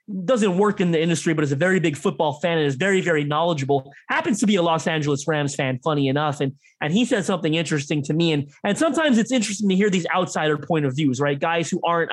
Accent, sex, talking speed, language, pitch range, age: American, male, 250 wpm, English, 160-205 Hz, 20-39